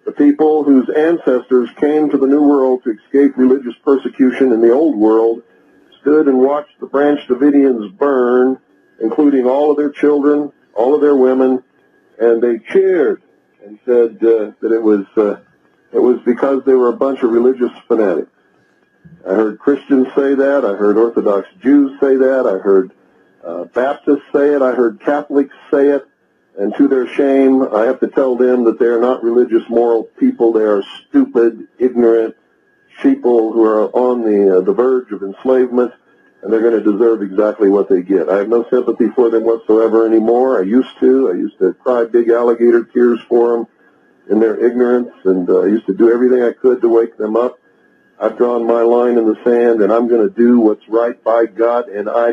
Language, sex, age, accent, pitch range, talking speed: Dutch, male, 50-69, American, 115-140 Hz, 195 wpm